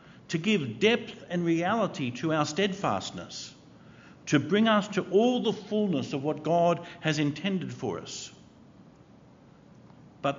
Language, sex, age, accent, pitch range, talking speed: English, male, 50-69, Australian, 125-170 Hz, 135 wpm